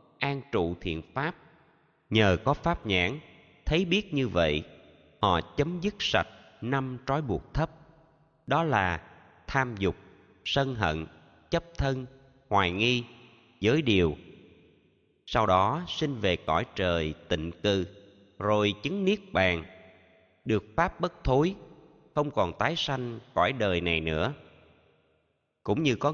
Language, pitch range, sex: Vietnamese, 90-140 Hz, male